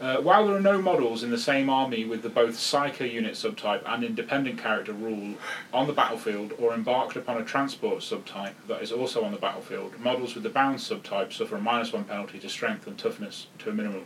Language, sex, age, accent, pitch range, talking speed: English, male, 30-49, British, 115-140 Hz, 220 wpm